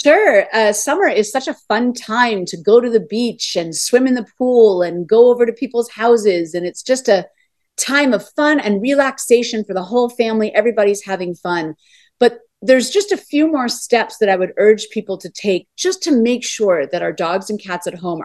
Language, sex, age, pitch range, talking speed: English, female, 40-59, 185-245 Hz, 215 wpm